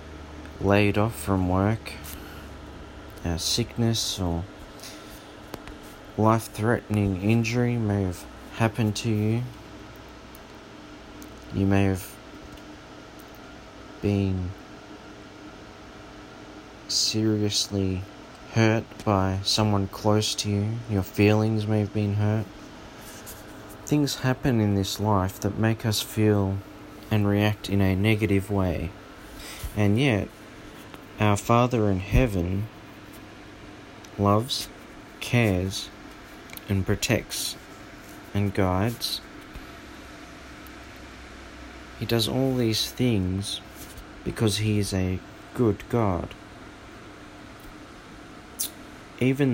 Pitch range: 95-110 Hz